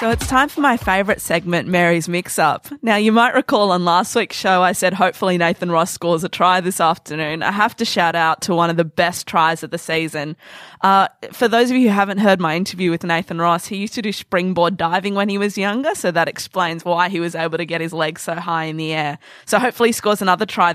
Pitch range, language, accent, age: 170-210 Hz, English, Australian, 20-39